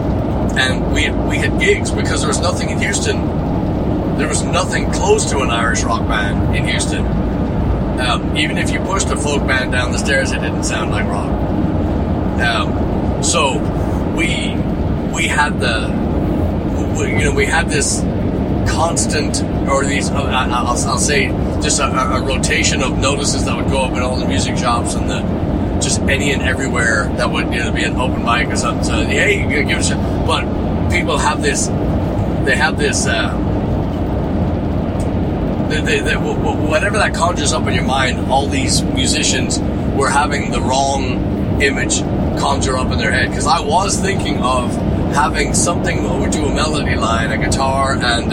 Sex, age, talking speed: male, 30-49, 175 wpm